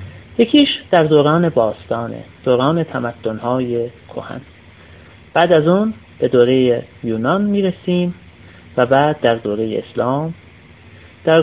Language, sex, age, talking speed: Persian, male, 30-49, 105 wpm